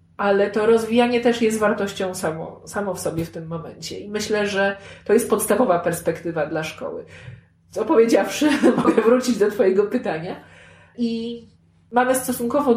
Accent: native